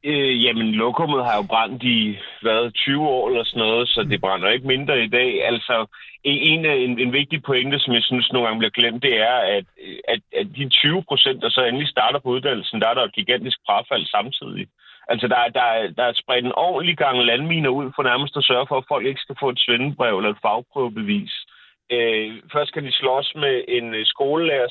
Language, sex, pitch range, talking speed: Danish, male, 120-150 Hz, 215 wpm